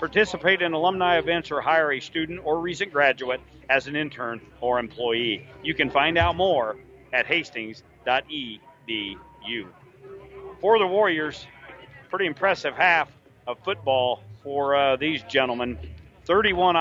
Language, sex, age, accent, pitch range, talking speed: English, male, 50-69, American, 130-165 Hz, 130 wpm